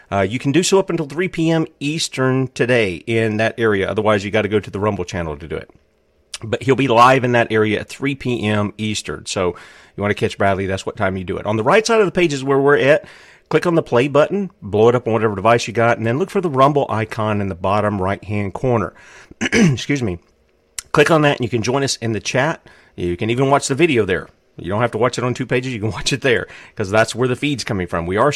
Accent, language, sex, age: American, English, male, 40-59